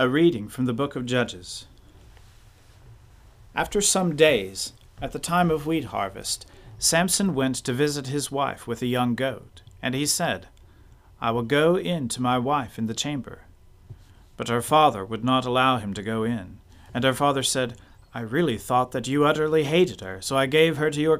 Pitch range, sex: 110-150 Hz, male